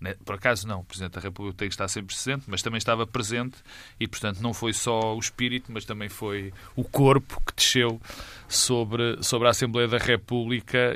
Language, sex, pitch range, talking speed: Portuguese, male, 105-125 Hz, 185 wpm